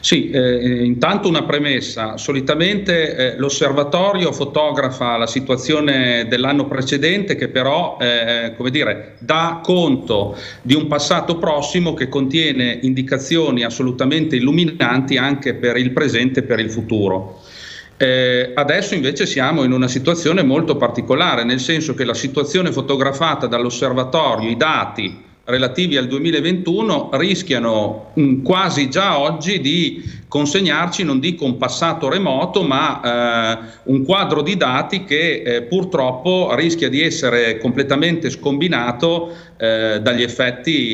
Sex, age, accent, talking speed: male, 40-59, native, 125 wpm